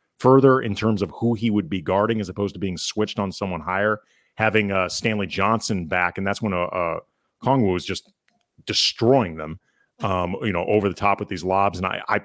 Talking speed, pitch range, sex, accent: 220 wpm, 100-125 Hz, male, American